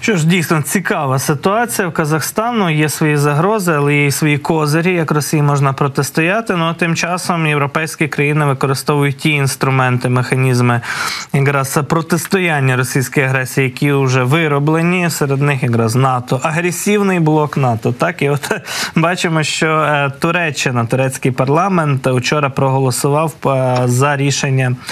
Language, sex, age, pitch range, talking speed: Ukrainian, male, 20-39, 130-165 Hz, 130 wpm